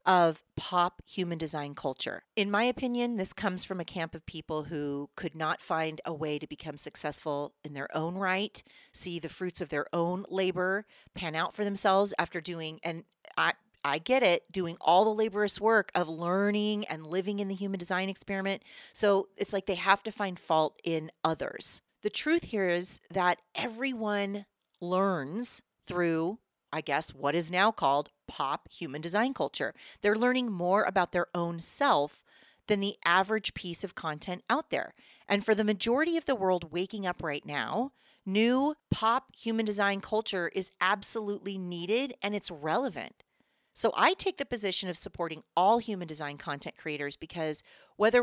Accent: American